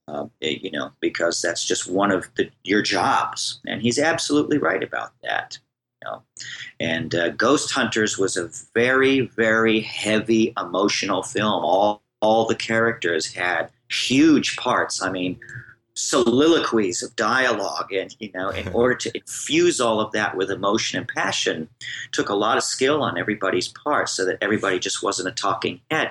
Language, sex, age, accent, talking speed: English, male, 40-59, American, 160 wpm